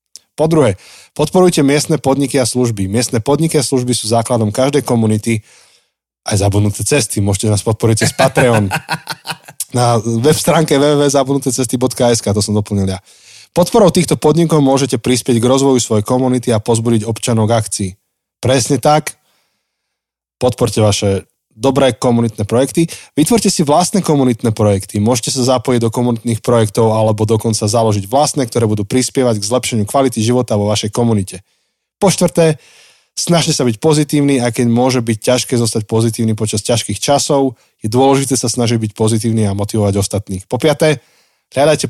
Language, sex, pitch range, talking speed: Slovak, male, 110-135 Hz, 150 wpm